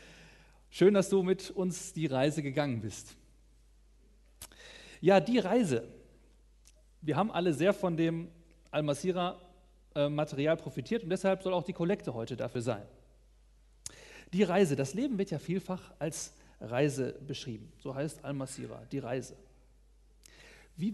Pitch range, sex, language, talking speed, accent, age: 140-195 Hz, male, German, 135 wpm, German, 40-59